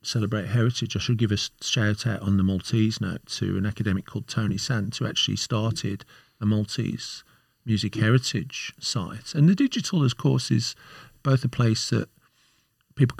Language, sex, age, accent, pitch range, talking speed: English, male, 40-59, British, 95-125 Hz, 170 wpm